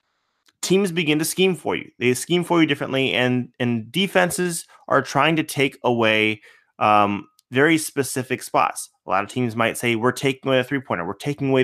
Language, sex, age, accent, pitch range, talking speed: English, male, 20-39, American, 120-150 Hz, 190 wpm